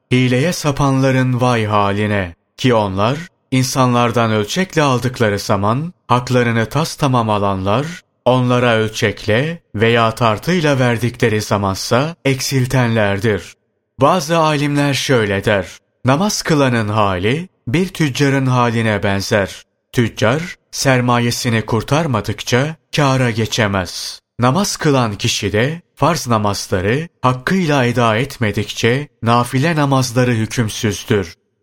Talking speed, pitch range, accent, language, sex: 95 wpm, 105-135 Hz, native, Turkish, male